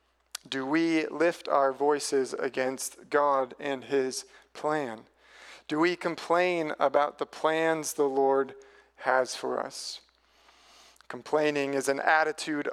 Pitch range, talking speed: 140-165 Hz, 120 wpm